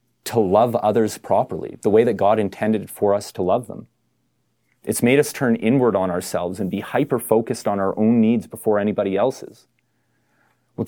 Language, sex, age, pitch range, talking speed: English, male, 30-49, 105-120 Hz, 175 wpm